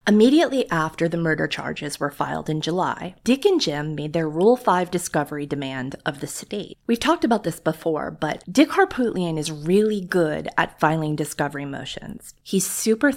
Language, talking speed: English, 175 wpm